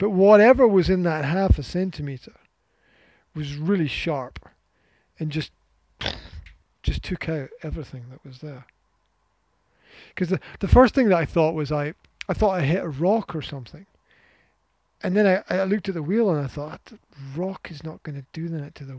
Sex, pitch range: male, 130-160 Hz